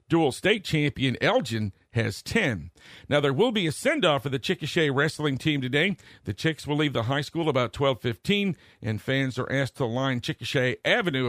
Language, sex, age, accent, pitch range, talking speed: English, male, 50-69, American, 125-165 Hz, 190 wpm